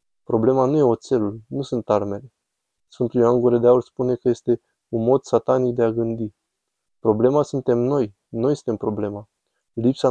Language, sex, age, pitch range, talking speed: Romanian, male, 20-39, 110-125 Hz, 165 wpm